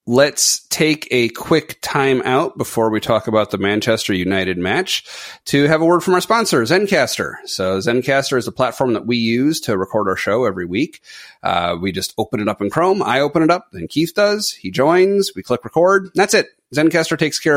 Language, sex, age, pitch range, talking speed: English, male, 30-49, 100-145 Hz, 210 wpm